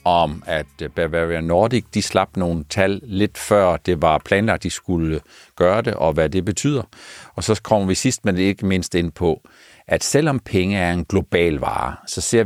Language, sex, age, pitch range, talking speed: Danish, male, 60-79, 85-110 Hz, 195 wpm